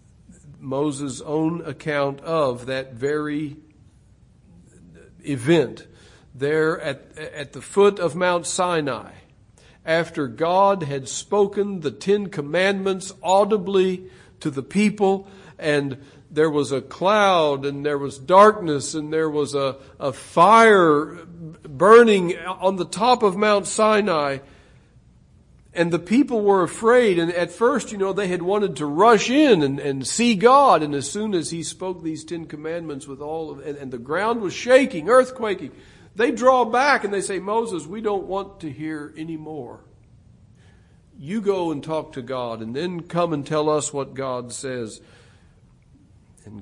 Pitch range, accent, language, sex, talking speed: 135-195 Hz, American, English, male, 150 wpm